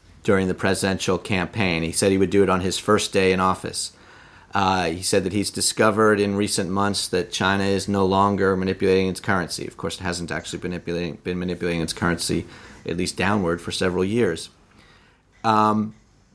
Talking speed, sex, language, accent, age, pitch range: 185 wpm, male, English, American, 40-59, 95-110 Hz